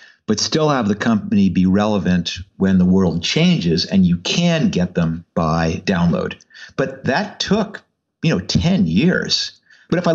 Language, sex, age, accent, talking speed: English, male, 50-69, American, 165 wpm